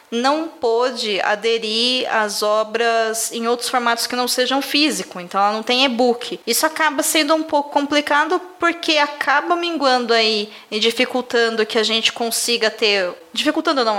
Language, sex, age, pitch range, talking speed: Portuguese, female, 20-39, 225-280 Hz, 155 wpm